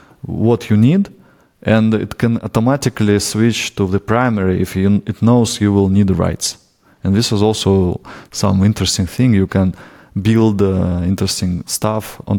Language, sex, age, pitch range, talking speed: English, male, 20-39, 100-125 Hz, 155 wpm